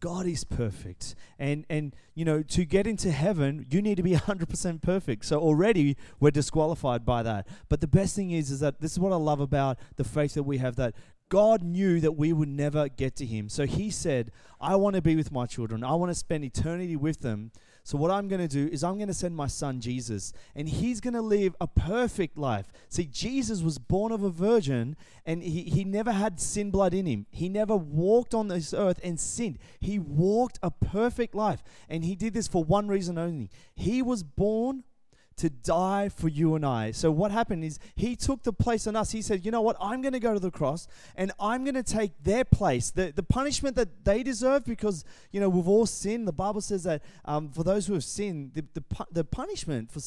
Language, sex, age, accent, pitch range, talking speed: English, male, 30-49, Australian, 140-205 Hz, 230 wpm